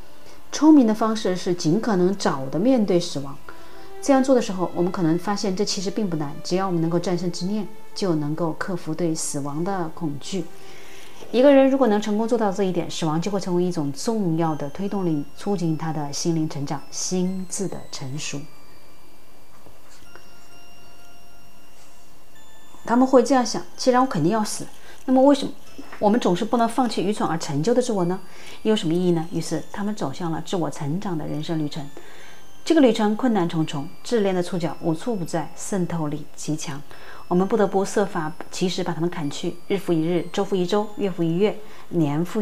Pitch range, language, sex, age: 160-210 Hz, Chinese, female, 30-49